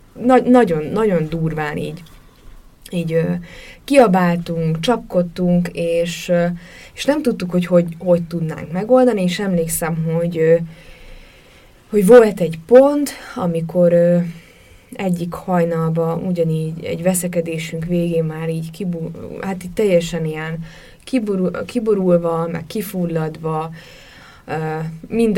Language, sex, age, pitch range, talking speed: Hungarian, female, 20-39, 165-190 Hz, 110 wpm